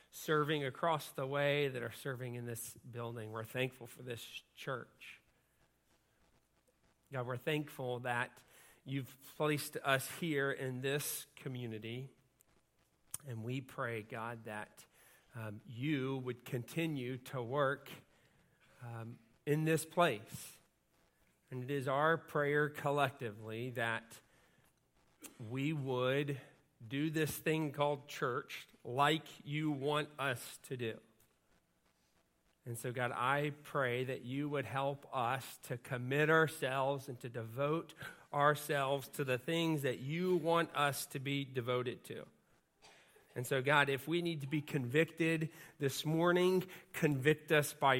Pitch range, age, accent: 125-150 Hz, 40-59, American